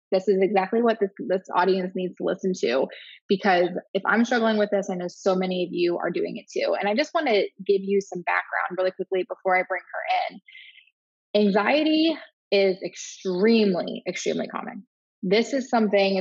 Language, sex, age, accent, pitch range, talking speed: English, female, 20-39, American, 185-230 Hz, 190 wpm